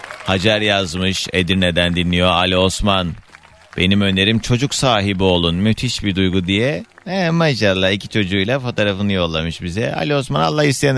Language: Turkish